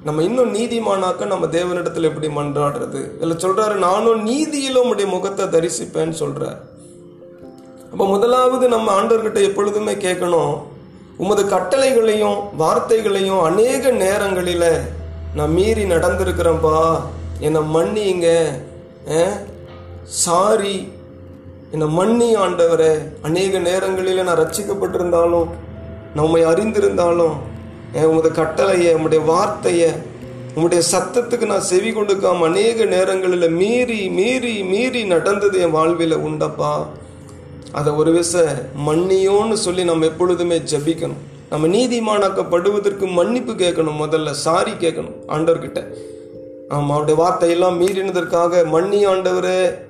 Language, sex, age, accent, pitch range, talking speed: Tamil, male, 30-49, native, 155-200 Hz, 100 wpm